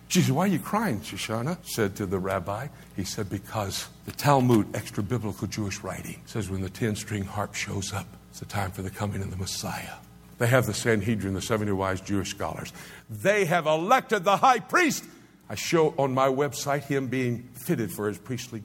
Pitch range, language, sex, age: 90-120 Hz, English, male, 60-79